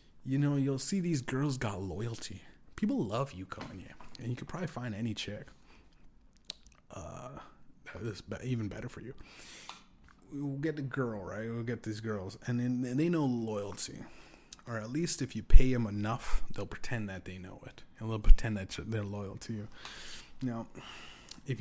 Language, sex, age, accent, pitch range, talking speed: English, male, 20-39, American, 105-125 Hz, 175 wpm